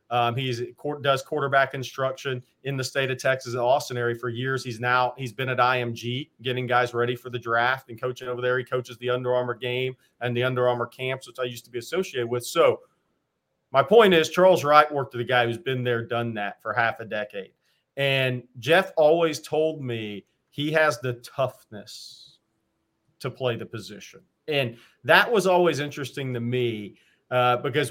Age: 40-59